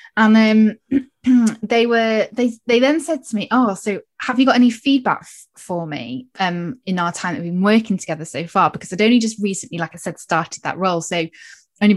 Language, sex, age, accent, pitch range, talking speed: English, female, 10-29, British, 175-230 Hz, 220 wpm